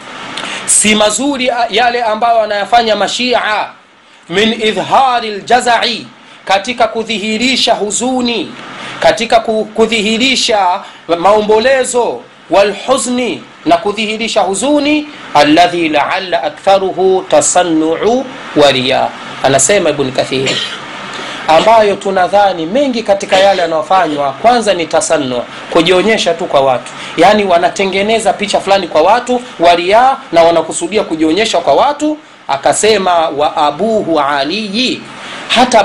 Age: 40-59